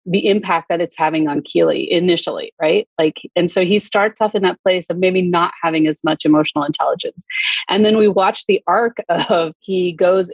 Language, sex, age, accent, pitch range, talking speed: English, female, 30-49, American, 160-195 Hz, 205 wpm